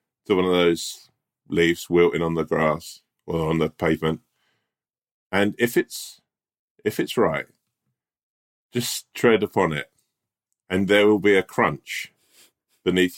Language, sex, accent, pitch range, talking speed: English, male, British, 85-100 Hz, 135 wpm